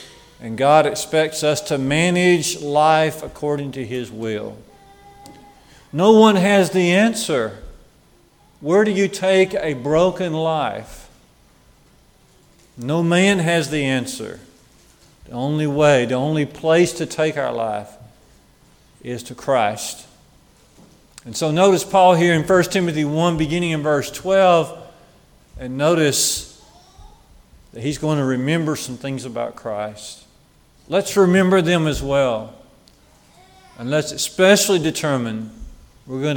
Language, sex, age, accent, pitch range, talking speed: English, male, 50-69, American, 130-180 Hz, 125 wpm